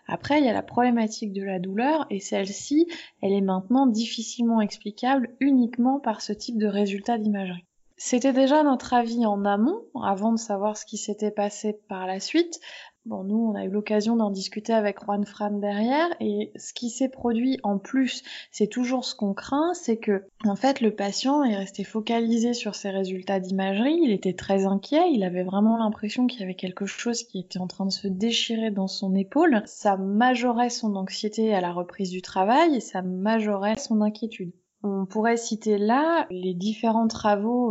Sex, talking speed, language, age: female, 190 wpm, French, 20-39